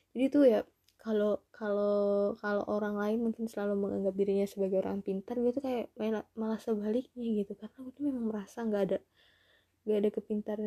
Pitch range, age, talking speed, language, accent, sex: 200-230 Hz, 20-39, 180 wpm, English, Indonesian, female